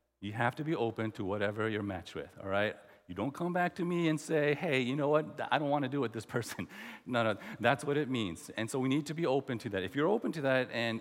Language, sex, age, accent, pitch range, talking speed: English, male, 40-59, American, 110-175 Hz, 290 wpm